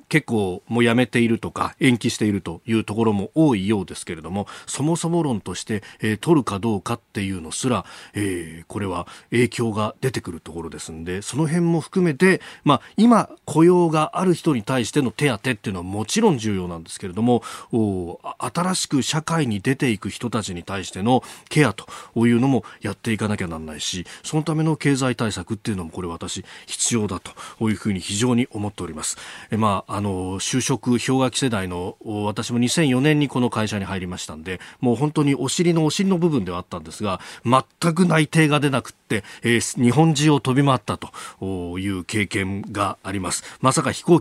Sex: male